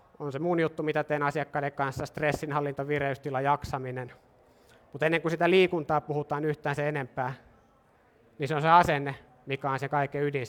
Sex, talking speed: male, 170 wpm